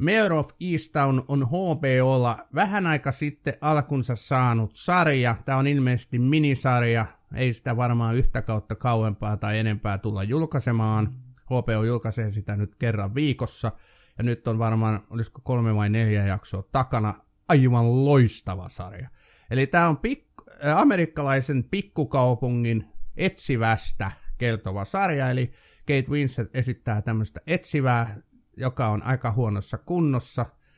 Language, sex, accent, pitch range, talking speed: Finnish, male, native, 110-135 Hz, 125 wpm